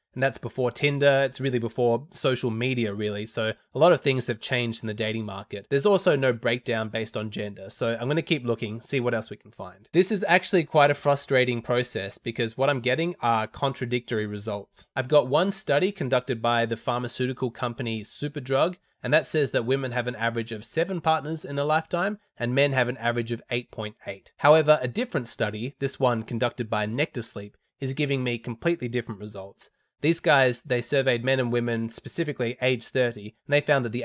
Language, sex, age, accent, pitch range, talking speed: English, male, 20-39, Australian, 115-145 Hz, 205 wpm